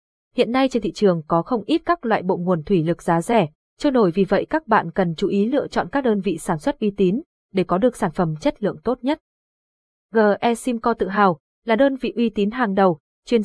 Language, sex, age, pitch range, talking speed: Vietnamese, female, 20-39, 185-235 Hz, 245 wpm